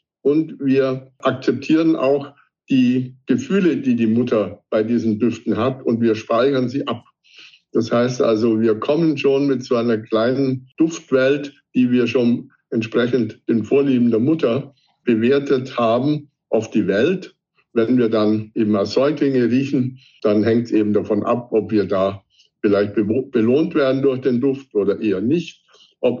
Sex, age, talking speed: male, 60-79, 155 wpm